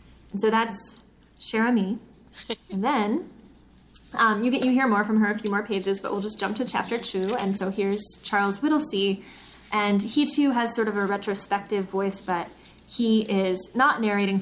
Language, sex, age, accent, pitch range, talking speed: English, female, 10-29, American, 190-220 Hz, 185 wpm